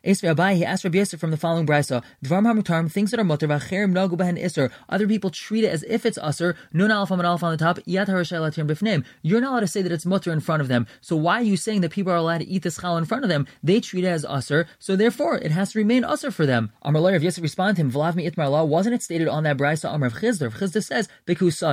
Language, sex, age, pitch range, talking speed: English, male, 20-39, 160-195 Hz, 220 wpm